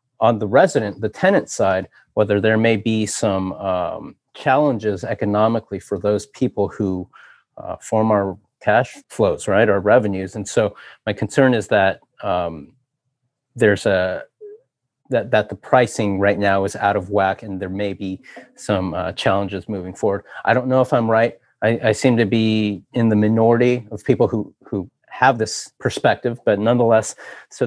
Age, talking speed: 30-49, 170 wpm